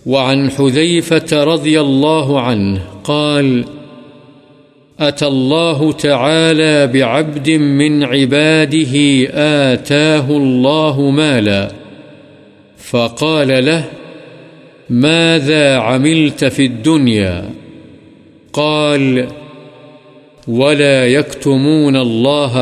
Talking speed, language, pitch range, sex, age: 65 wpm, Urdu, 135-155 Hz, male, 50-69